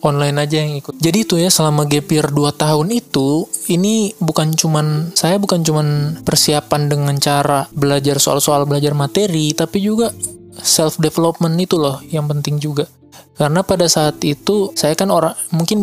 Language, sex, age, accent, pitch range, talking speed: Indonesian, male, 20-39, native, 145-165 Hz, 160 wpm